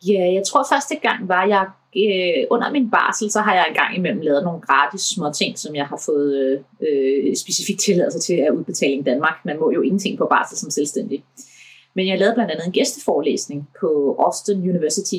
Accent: native